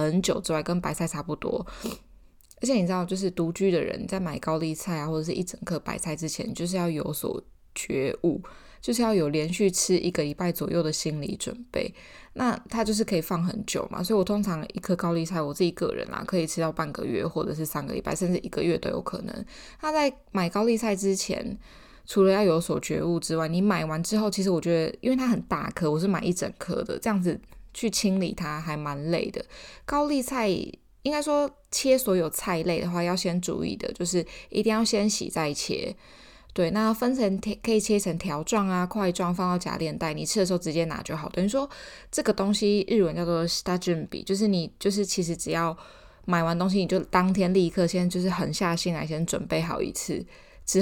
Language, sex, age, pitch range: Chinese, female, 10-29, 170-205 Hz